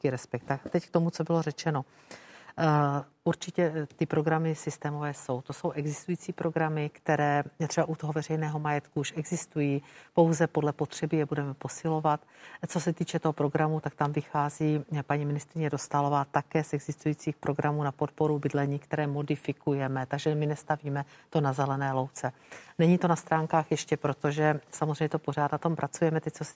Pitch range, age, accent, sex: 145-160 Hz, 50-69, native, female